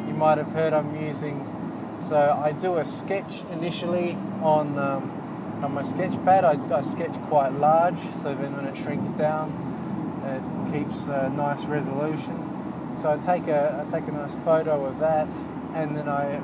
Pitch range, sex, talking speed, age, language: 150-180 Hz, male, 170 wpm, 20-39, English